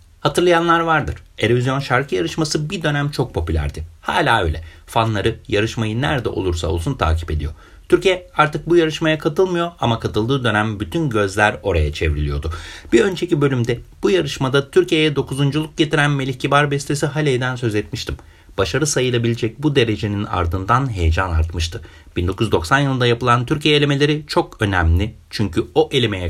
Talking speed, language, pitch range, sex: 140 wpm, Turkish, 95-145 Hz, male